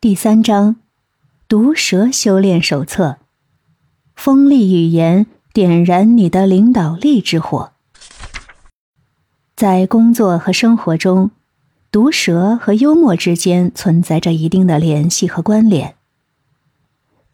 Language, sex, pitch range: Chinese, female, 155-215 Hz